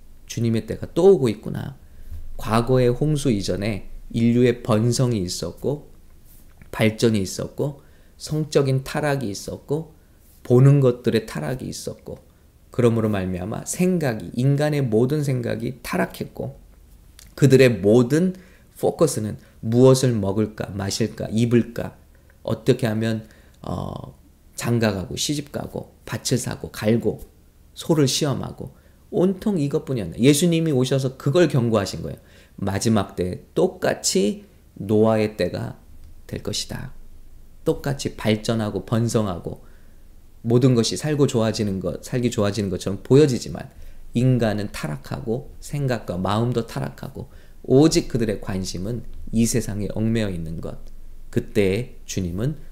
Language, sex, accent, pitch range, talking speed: English, male, Korean, 95-130 Hz, 100 wpm